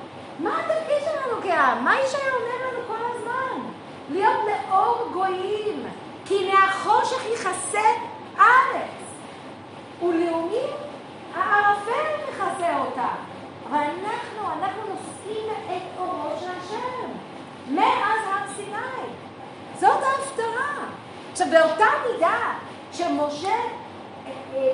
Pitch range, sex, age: 275-395 Hz, female, 40-59